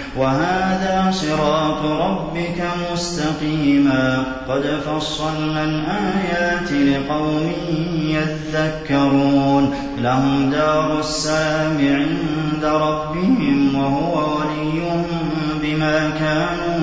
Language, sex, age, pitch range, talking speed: Arabic, male, 30-49, 140-155 Hz, 65 wpm